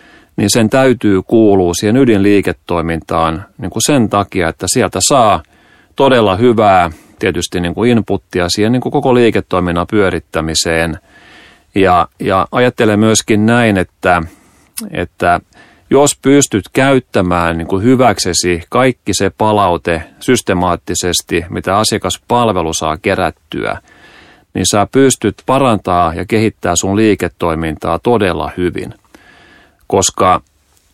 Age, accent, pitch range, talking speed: 40-59, native, 90-115 Hz, 110 wpm